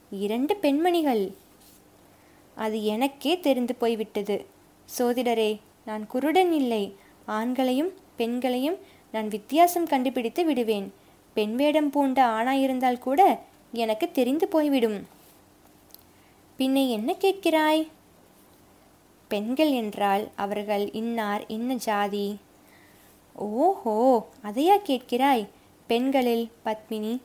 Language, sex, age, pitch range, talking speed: Tamil, female, 20-39, 215-285 Hz, 80 wpm